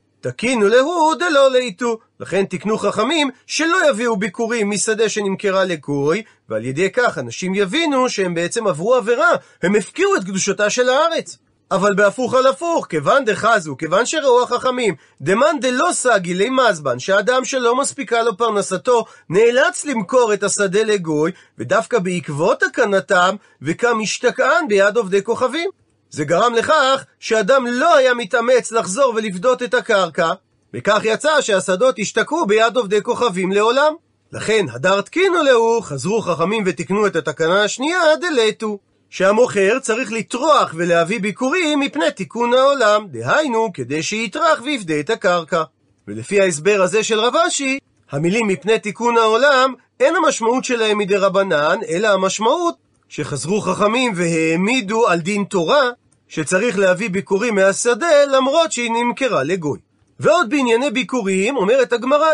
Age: 40-59